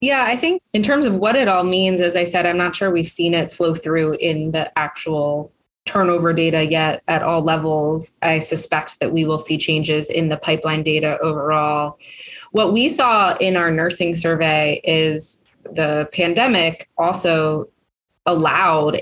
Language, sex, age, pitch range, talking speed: English, female, 20-39, 150-170 Hz, 170 wpm